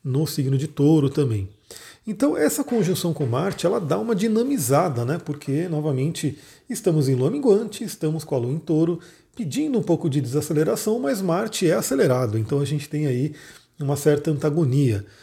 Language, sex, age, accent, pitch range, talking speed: Portuguese, male, 40-59, Brazilian, 135-165 Hz, 175 wpm